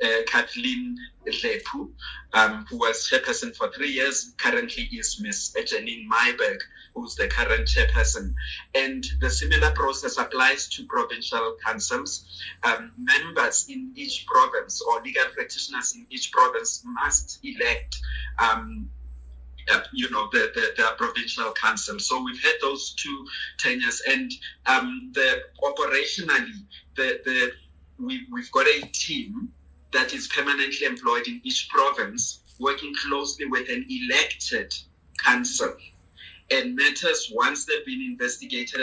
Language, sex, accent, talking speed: English, male, South African, 130 wpm